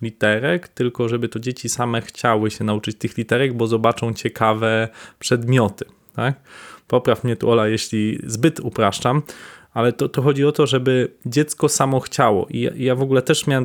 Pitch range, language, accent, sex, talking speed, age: 115-135 Hz, Polish, native, male, 170 wpm, 20-39